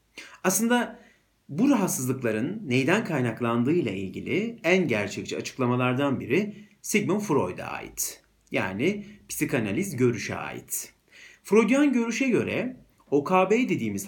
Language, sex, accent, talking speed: Turkish, male, native, 95 wpm